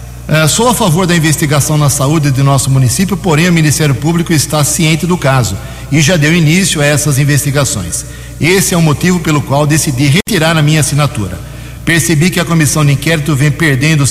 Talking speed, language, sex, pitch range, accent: 195 wpm, Portuguese, male, 140-165 Hz, Brazilian